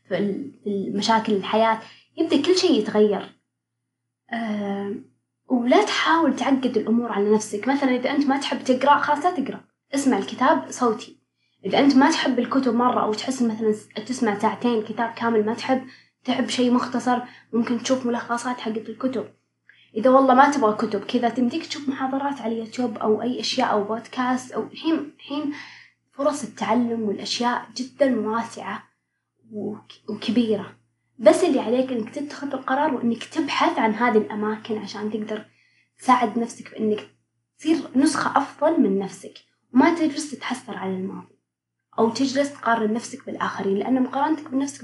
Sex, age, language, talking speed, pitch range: female, 20-39, Arabic, 145 wpm, 220-270 Hz